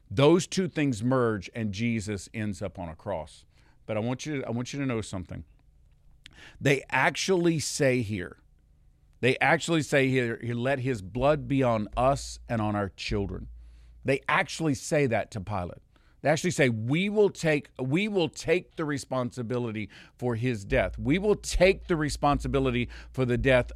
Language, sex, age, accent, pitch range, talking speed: English, male, 50-69, American, 100-145 Hz, 170 wpm